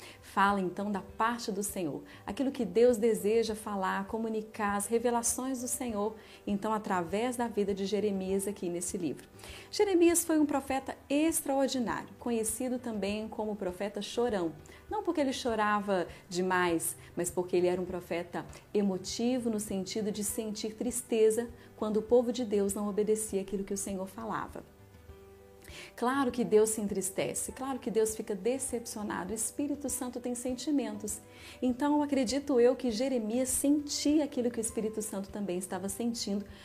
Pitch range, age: 195-245 Hz, 40-59